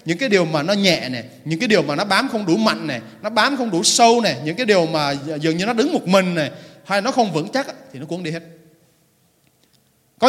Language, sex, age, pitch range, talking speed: Vietnamese, male, 20-39, 155-215 Hz, 260 wpm